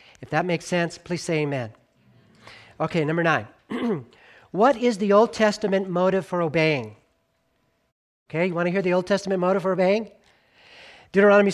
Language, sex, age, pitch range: English, male, 40-59, 185-270 Hz